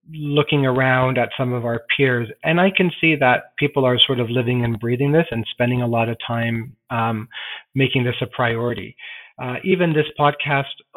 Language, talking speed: English, 190 wpm